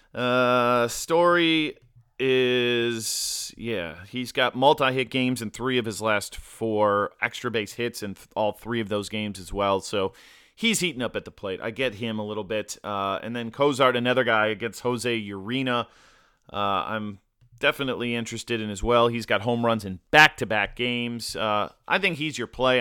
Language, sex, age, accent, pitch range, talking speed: English, male, 30-49, American, 110-130 Hz, 180 wpm